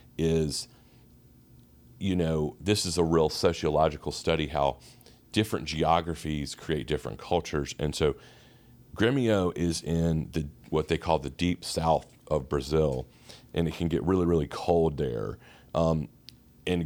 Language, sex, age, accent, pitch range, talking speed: English, male, 40-59, American, 75-90 Hz, 140 wpm